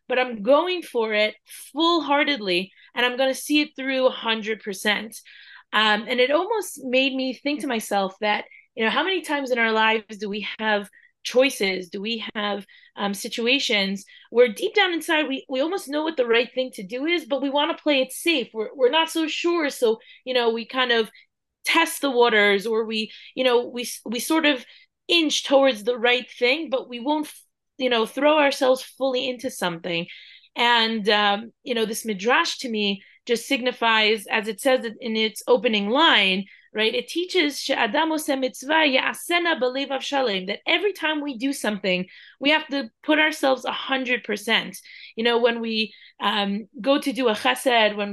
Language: English